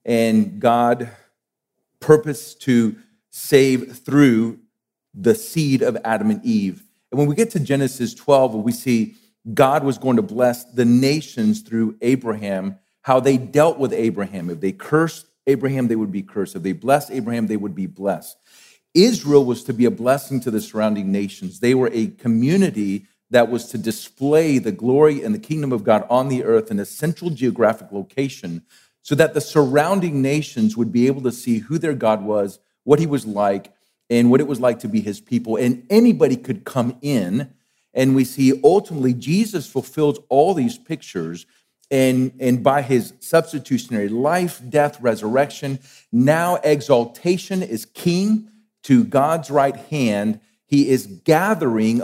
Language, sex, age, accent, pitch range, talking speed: English, male, 40-59, American, 115-150 Hz, 165 wpm